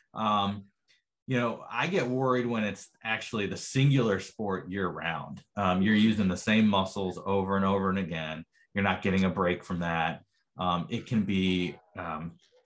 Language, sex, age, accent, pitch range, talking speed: English, male, 30-49, American, 95-125 Hz, 175 wpm